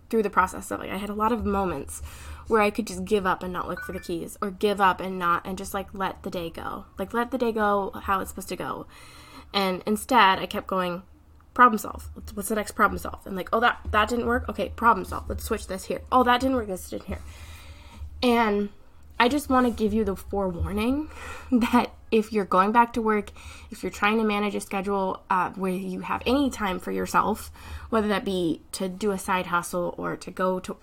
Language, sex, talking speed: English, female, 235 wpm